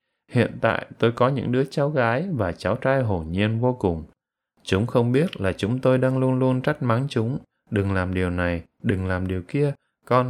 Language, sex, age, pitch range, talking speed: Vietnamese, male, 20-39, 95-130 Hz, 210 wpm